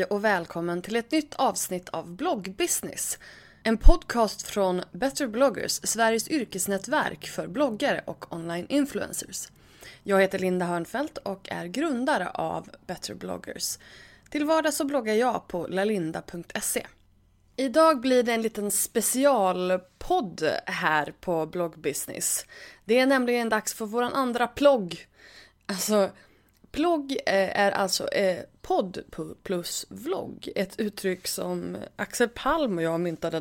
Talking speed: 125 wpm